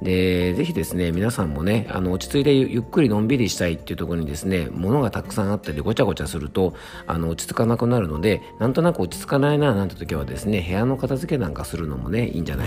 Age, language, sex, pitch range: 40-59, Japanese, male, 80-115 Hz